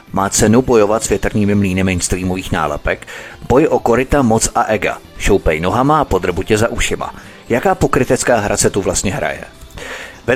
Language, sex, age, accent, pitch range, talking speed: Czech, male, 30-49, native, 100-130 Hz, 160 wpm